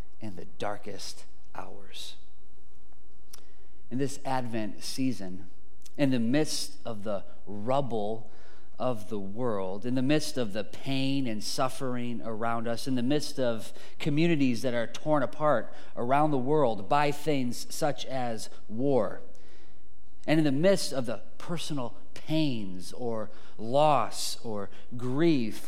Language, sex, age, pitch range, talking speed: English, male, 30-49, 100-140 Hz, 130 wpm